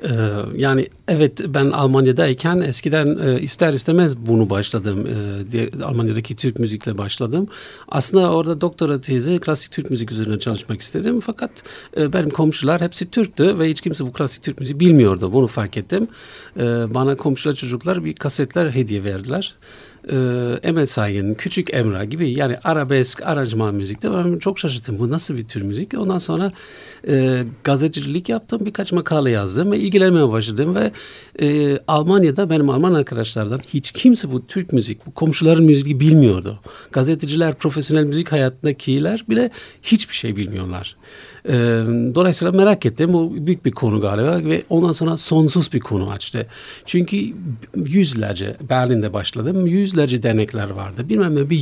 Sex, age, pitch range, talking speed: male, 50-69, 115-170 Hz, 150 wpm